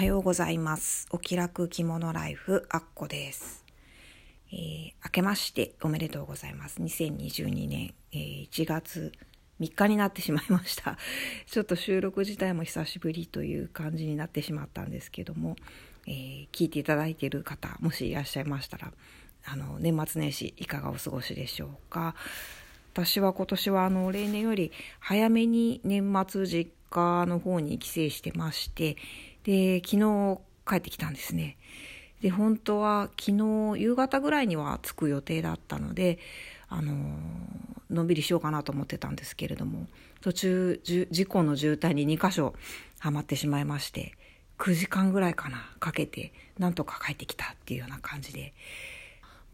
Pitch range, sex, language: 145-190 Hz, female, Japanese